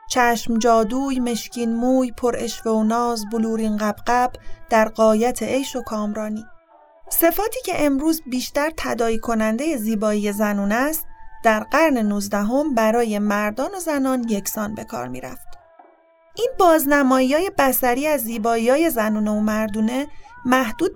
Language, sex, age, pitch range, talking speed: Arabic, female, 30-49, 225-275 Hz, 130 wpm